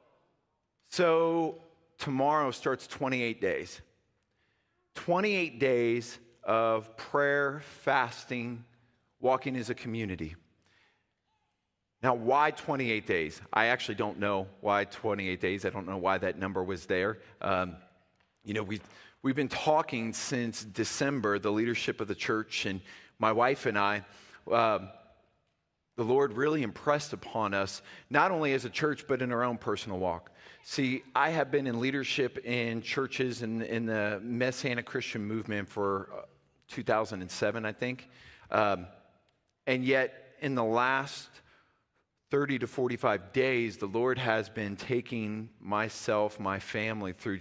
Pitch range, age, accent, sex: 105-130 Hz, 40-59, American, male